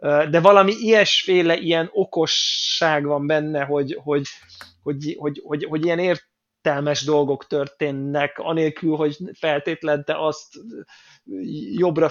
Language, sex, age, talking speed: Hungarian, male, 20-39, 110 wpm